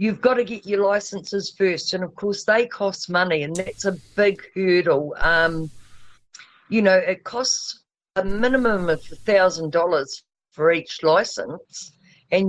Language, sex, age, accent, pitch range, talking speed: English, female, 50-69, Australian, 160-200 Hz, 150 wpm